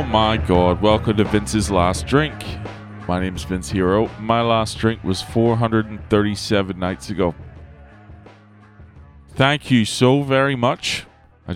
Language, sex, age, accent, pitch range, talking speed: English, male, 30-49, American, 85-110 Hz, 135 wpm